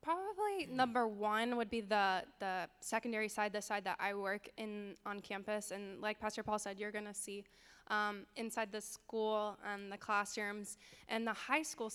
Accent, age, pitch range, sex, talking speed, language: American, 10-29, 200-225 Hz, female, 180 wpm, English